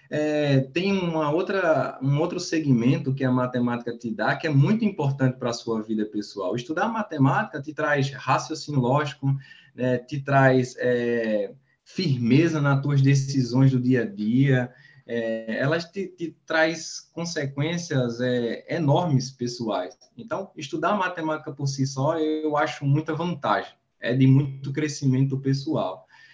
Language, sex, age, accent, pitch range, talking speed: Portuguese, male, 20-39, Brazilian, 125-160 Hz, 145 wpm